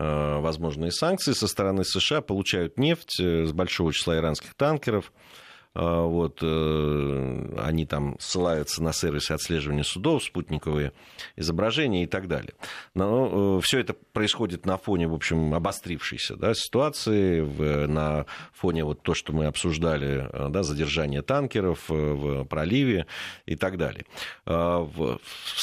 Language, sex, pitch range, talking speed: Russian, male, 80-120 Hz, 120 wpm